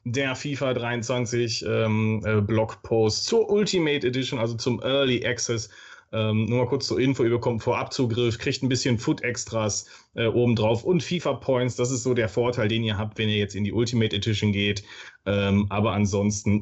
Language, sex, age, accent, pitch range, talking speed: German, male, 30-49, German, 110-135 Hz, 175 wpm